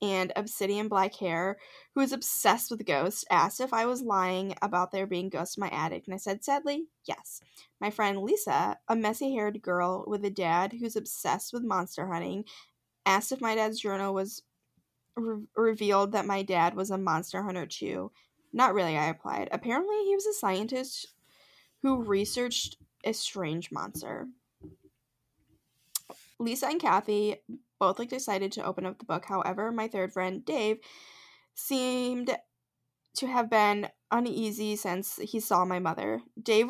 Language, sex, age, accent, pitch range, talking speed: English, female, 10-29, American, 190-245 Hz, 155 wpm